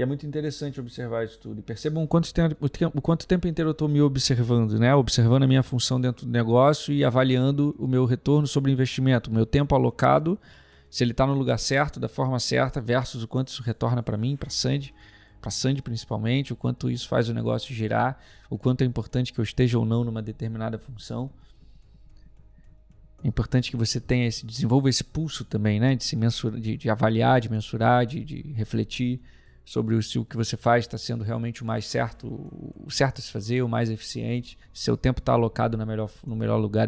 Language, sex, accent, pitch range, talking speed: Portuguese, male, Brazilian, 110-135 Hz, 215 wpm